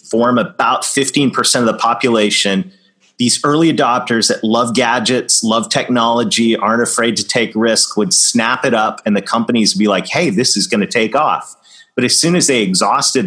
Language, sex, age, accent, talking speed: English, male, 30-49, American, 190 wpm